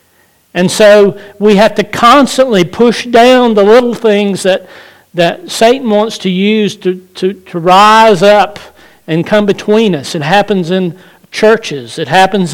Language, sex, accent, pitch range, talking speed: English, male, American, 155-210 Hz, 155 wpm